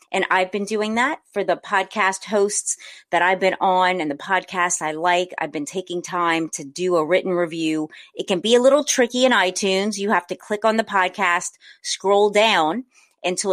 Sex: female